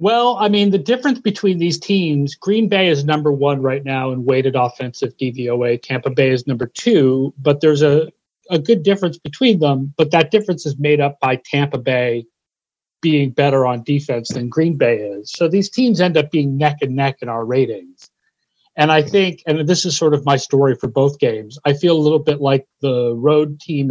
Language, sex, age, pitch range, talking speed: English, male, 40-59, 135-175 Hz, 210 wpm